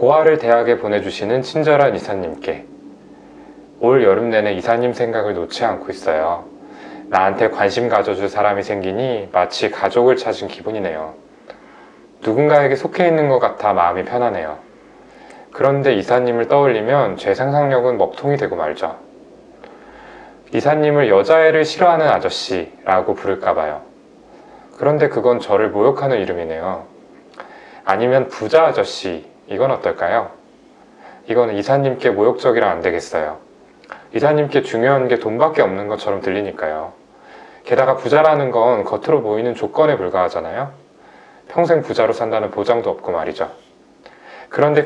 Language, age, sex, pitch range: Korean, 20-39, male, 100-150 Hz